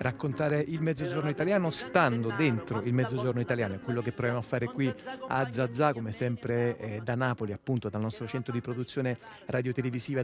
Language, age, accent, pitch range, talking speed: Italian, 30-49, native, 115-135 Hz, 175 wpm